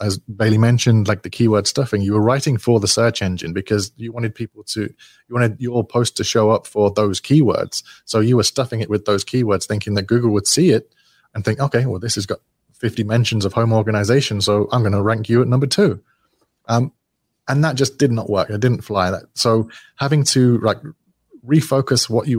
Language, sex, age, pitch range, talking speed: English, male, 30-49, 105-120 Hz, 220 wpm